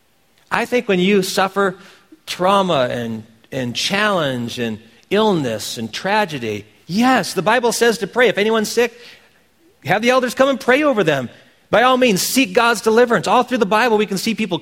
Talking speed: 180 wpm